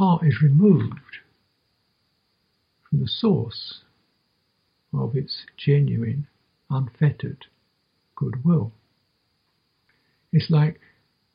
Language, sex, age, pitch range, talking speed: English, male, 60-79, 125-155 Hz, 65 wpm